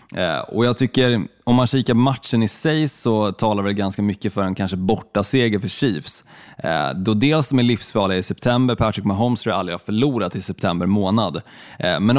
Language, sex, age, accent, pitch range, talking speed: Swedish, male, 20-39, native, 100-120 Hz, 205 wpm